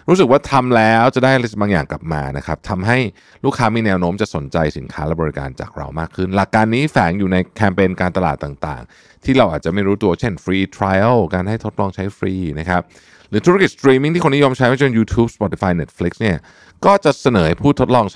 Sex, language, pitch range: male, Thai, 80-110 Hz